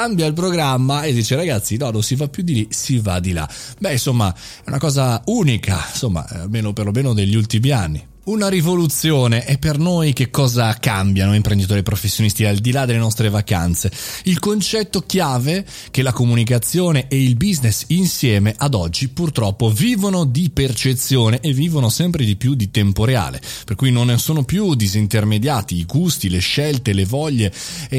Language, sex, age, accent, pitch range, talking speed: Italian, male, 30-49, native, 105-145 Hz, 180 wpm